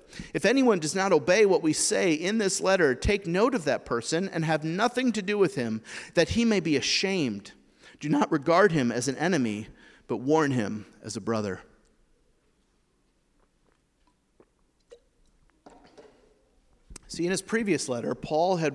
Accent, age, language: American, 40-59, English